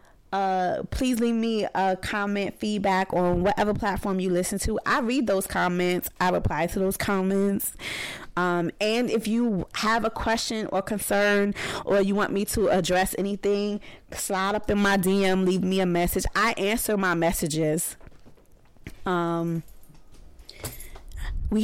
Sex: female